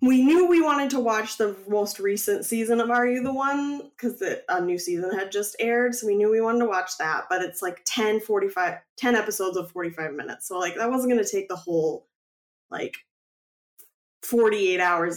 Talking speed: 205 wpm